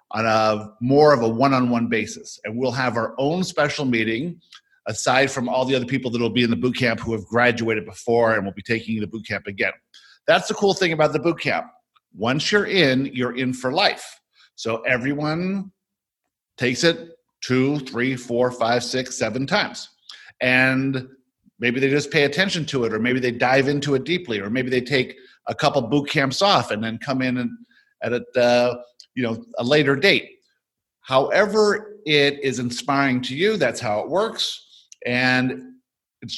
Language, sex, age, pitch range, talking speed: English, male, 50-69, 125-155 Hz, 190 wpm